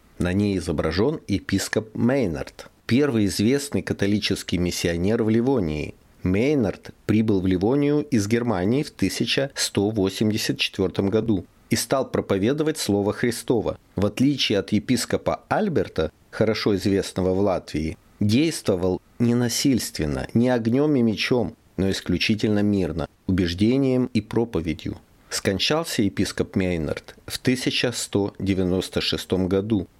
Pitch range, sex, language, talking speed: 95-115 Hz, male, Russian, 105 wpm